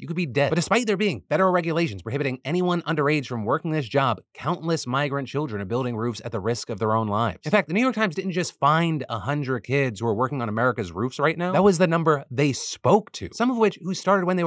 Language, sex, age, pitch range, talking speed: English, male, 30-49, 115-160 Hz, 260 wpm